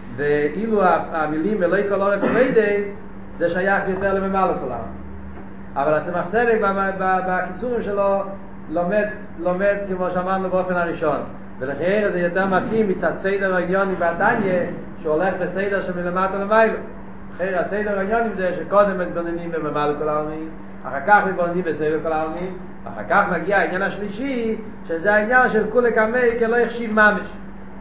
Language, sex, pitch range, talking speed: Hebrew, male, 175-220 Hz, 135 wpm